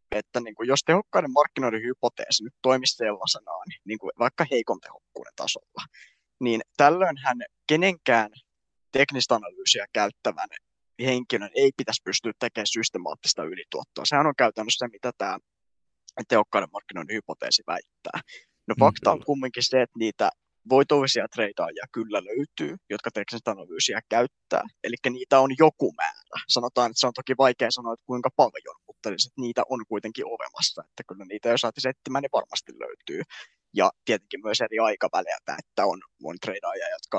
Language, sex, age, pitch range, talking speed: Finnish, male, 20-39, 115-150 Hz, 150 wpm